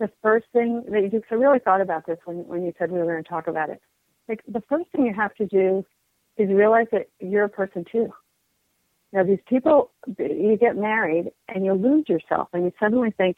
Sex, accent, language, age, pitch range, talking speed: female, American, English, 50-69, 180-220 Hz, 235 wpm